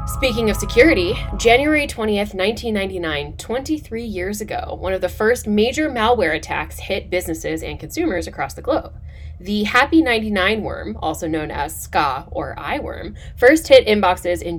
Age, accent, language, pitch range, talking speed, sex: 10-29, American, English, 165-225 Hz, 150 wpm, female